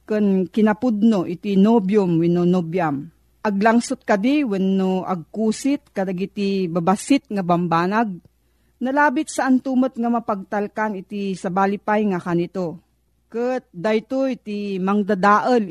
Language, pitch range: Filipino, 190-240 Hz